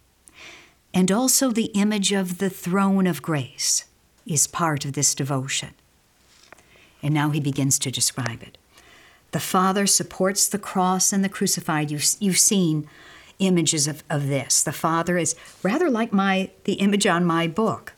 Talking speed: 155 wpm